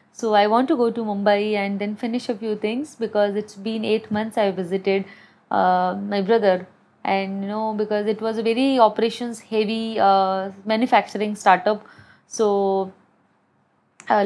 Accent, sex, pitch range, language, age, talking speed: native, female, 195-225 Hz, Hindi, 20-39, 160 wpm